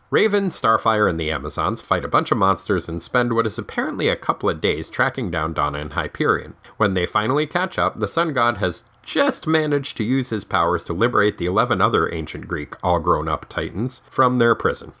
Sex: male